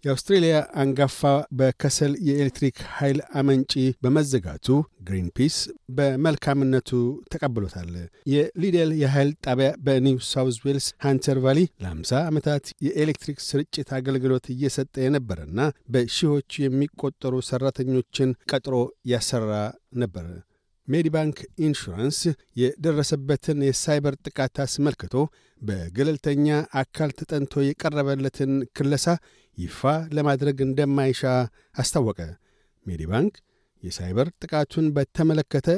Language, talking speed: Amharic, 85 wpm